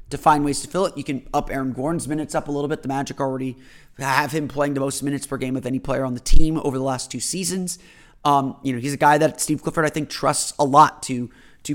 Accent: American